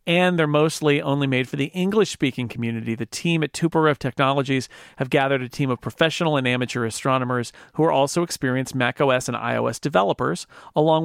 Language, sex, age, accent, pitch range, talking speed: English, male, 40-59, American, 130-160 Hz, 175 wpm